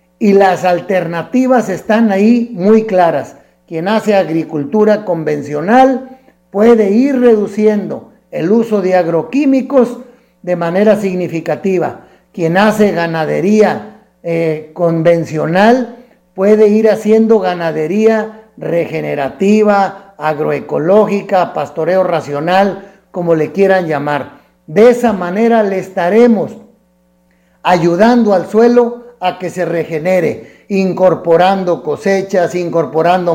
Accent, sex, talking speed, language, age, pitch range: Mexican, male, 95 wpm, Spanish, 50-69, 170-220 Hz